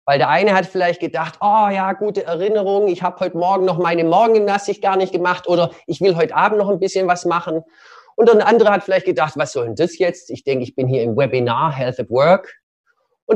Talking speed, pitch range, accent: 235 wpm, 155-210 Hz, German